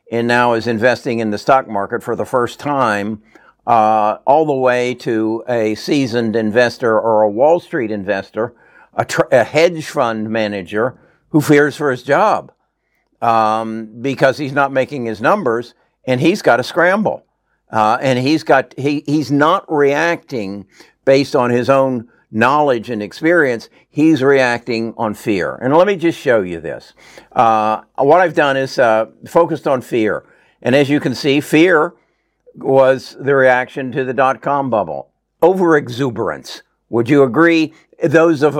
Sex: male